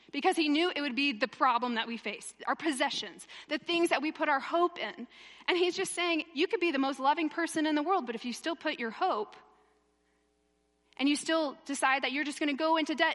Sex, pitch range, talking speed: female, 220-320 Hz, 240 wpm